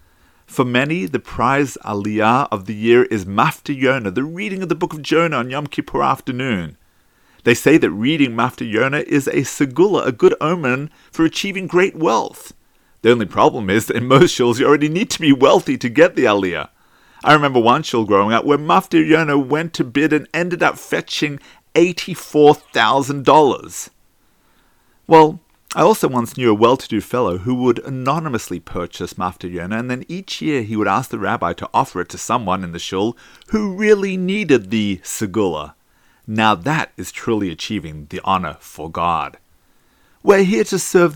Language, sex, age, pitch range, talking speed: English, male, 40-59, 115-170 Hz, 175 wpm